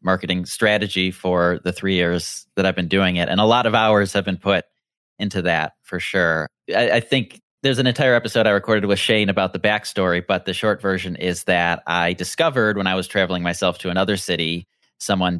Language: English